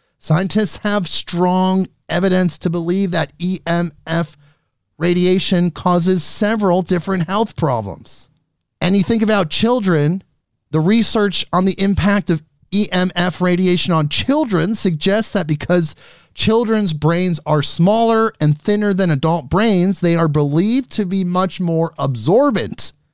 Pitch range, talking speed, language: 145-195 Hz, 125 wpm, English